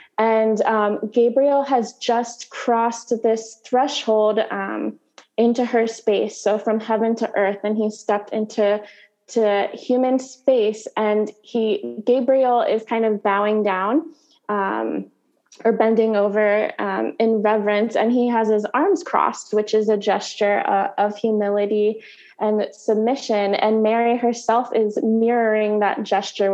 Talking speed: 140 wpm